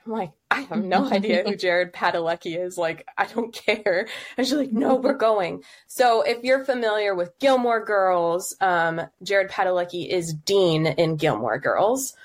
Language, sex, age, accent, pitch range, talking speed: English, female, 20-39, American, 175-255 Hz, 170 wpm